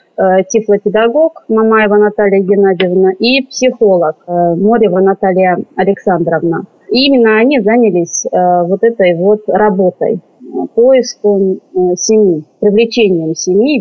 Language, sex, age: Russian, female, 30-49